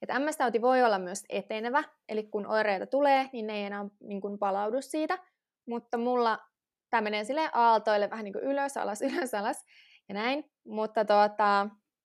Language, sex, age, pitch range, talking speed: Finnish, female, 20-39, 210-260 Hz, 175 wpm